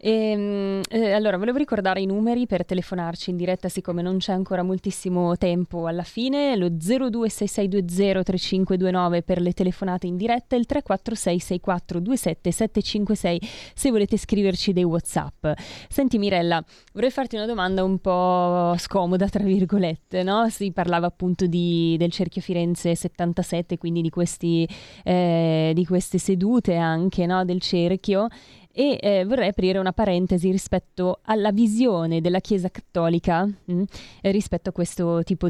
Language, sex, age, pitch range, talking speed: Italian, female, 20-39, 175-200 Hz, 135 wpm